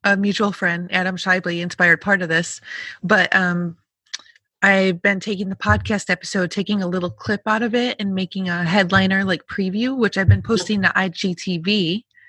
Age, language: 20-39, English